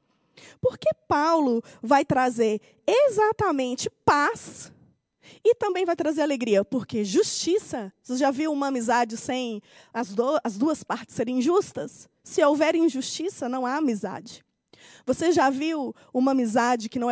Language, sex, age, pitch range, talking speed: Portuguese, female, 20-39, 230-290 Hz, 135 wpm